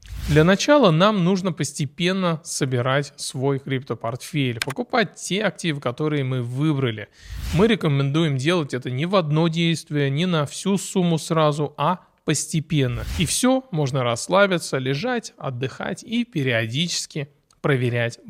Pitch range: 135-185 Hz